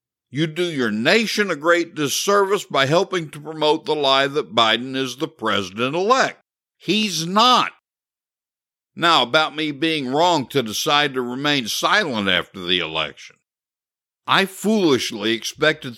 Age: 60-79